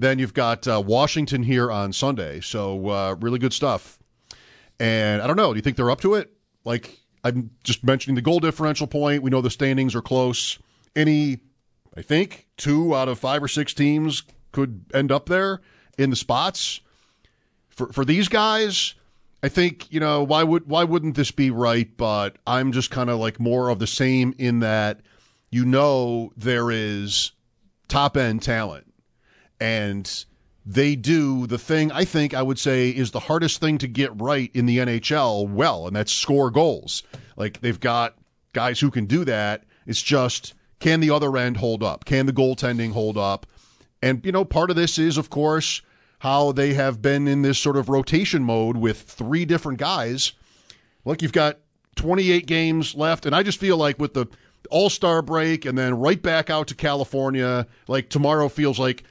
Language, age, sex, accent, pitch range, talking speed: English, 40-59, male, American, 120-150 Hz, 185 wpm